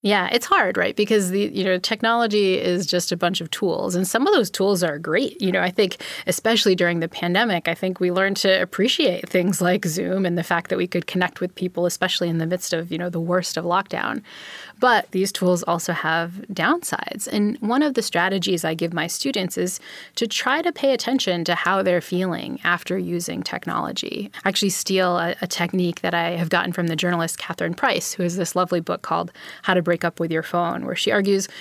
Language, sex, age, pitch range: English, female, 20-39, 170-205 Hz